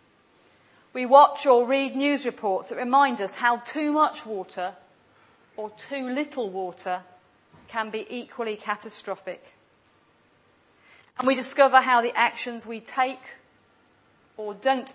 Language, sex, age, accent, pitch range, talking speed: English, female, 40-59, British, 205-260 Hz, 125 wpm